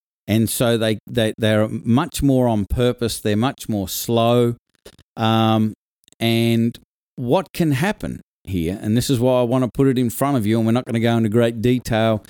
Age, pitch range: 50-69, 105-130 Hz